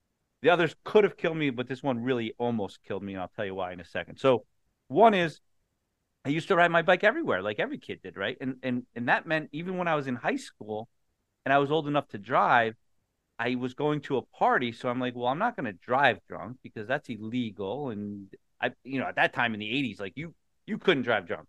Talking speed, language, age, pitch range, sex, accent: 250 wpm, English, 30-49, 105-145 Hz, male, American